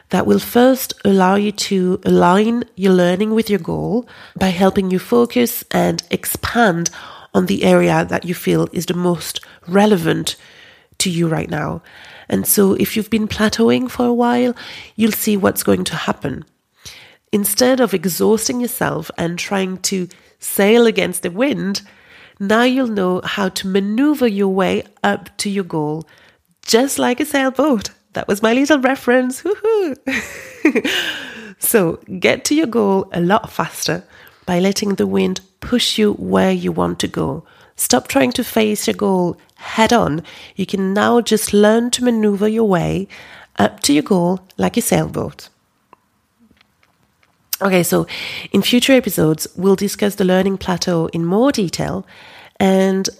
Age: 30-49